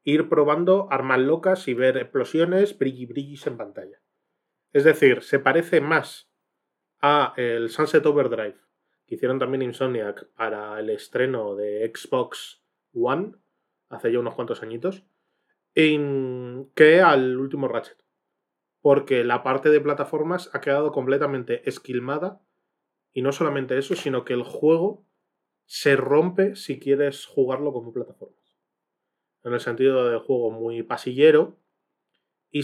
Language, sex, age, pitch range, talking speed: Spanish, male, 20-39, 125-160 Hz, 130 wpm